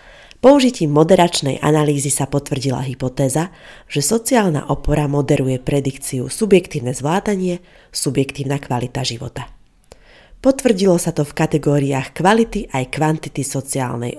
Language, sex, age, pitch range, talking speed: Slovak, female, 30-49, 135-185 Hz, 105 wpm